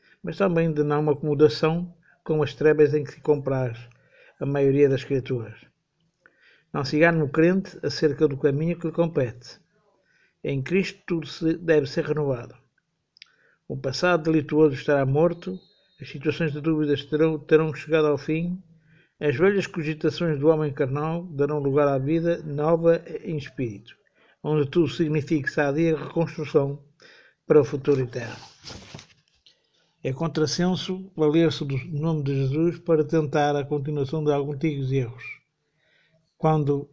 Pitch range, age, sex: 145-165 Hz, 50-69, male